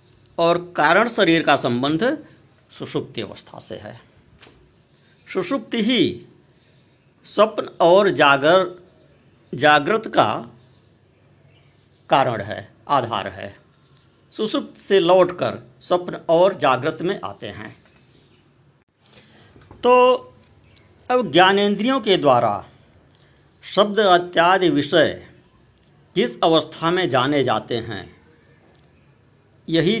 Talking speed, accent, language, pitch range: 90 wpm, native, Hindi, 120-165 Hz